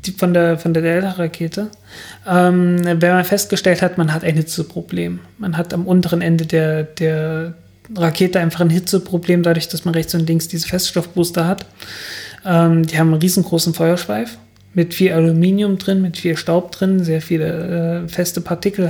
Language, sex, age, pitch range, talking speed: German, male, 20-39, 160-180 Hz, 160 wpm